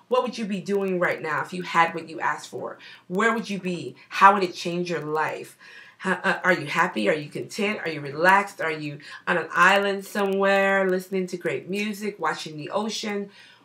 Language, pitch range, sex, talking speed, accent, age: English, 150-190 Hz, female, 205 wpm, American, 30-49